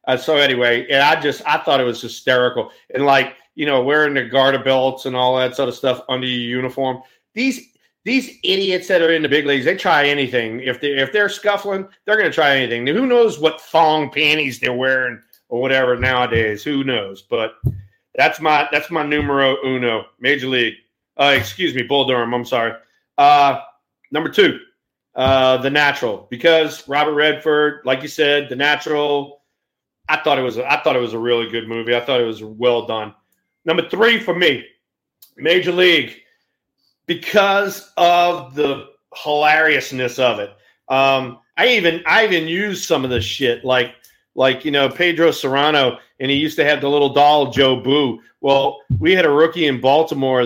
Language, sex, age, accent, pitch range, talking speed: English, male, 40-59, American, 125-155 Hz, 185 wpm